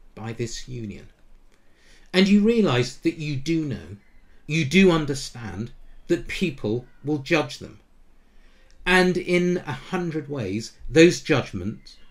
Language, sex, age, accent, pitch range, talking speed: English, male, 50-69, British, 110-155 Hz, 125 wpm